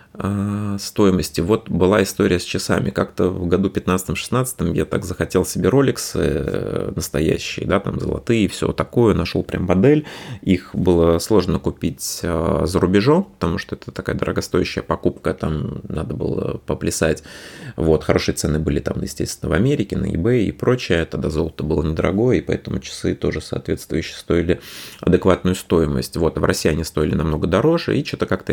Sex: male